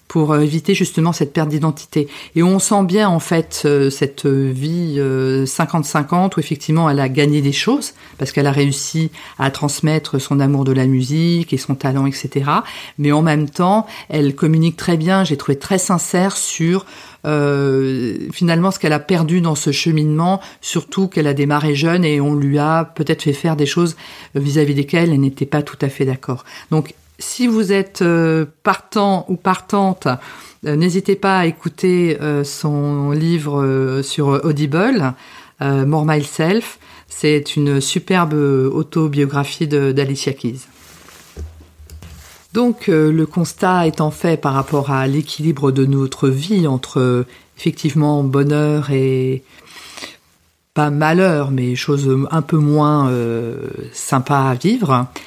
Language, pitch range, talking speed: French, 140-170 Hz, 150 wpm